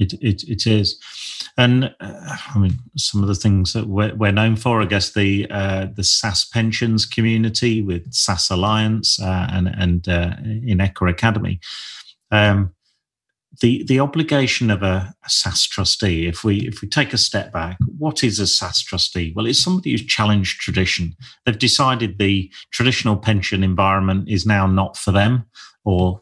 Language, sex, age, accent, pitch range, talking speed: English, male, 40-59, British, 95-115 Hz, 170 wpm